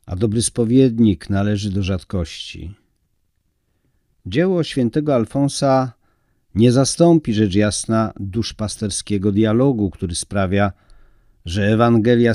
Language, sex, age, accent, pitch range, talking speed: Polish, male, 50-69, native, 95-120 Hz, 90 wpm